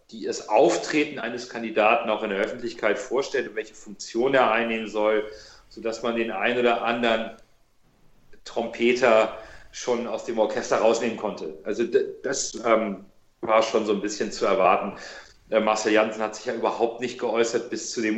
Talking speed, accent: 160 wpm, German